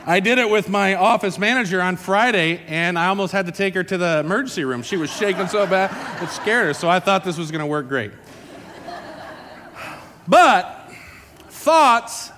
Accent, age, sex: American, 40-59, male